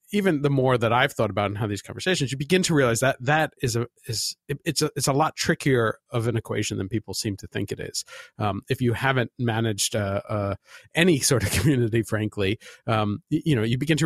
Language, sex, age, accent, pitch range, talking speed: English, male, 40-59, American, 110-140 Hz, 240 wpm